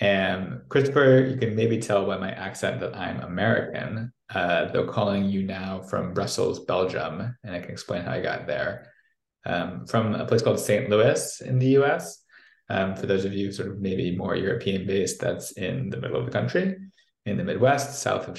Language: English